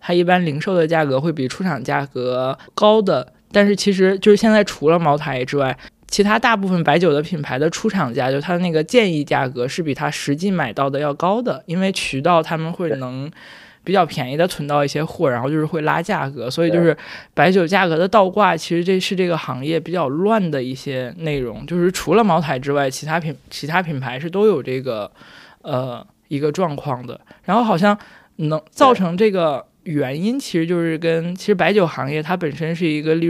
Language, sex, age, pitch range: Chinese, male, 20-39, 145-190 Hz